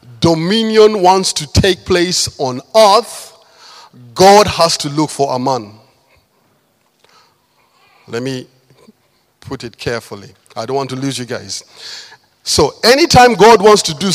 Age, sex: 50-69, male